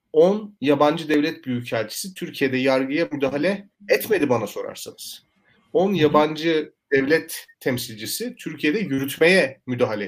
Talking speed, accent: 100 wpm, native